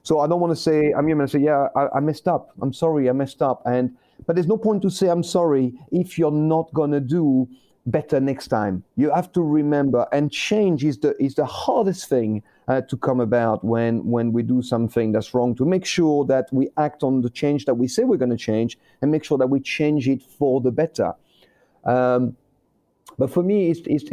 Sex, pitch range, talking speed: male, 130-160 Hz, 230 wpm